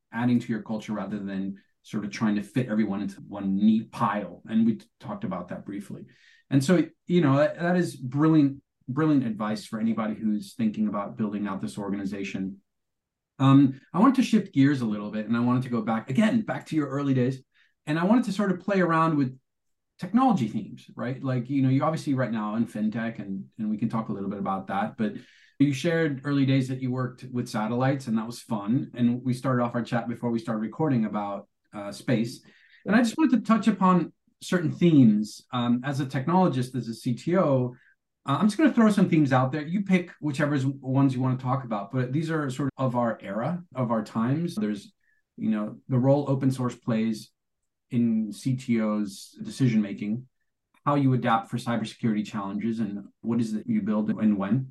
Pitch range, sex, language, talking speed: 110-150 Hz, male, English, 205 wpm